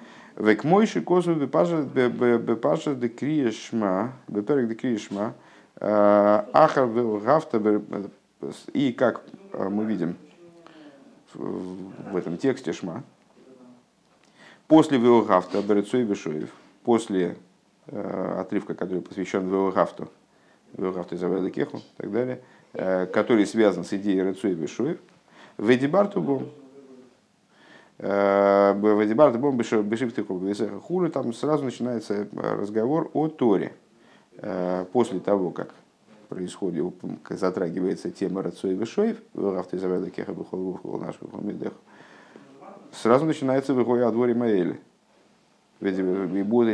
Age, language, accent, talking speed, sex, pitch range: 50-69, Russian, native, 70 wpm, male, 100-130 Hz